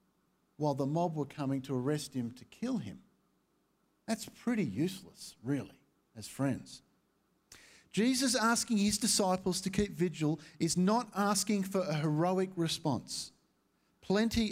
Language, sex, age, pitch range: English, male, 50-69, 155-215 Hz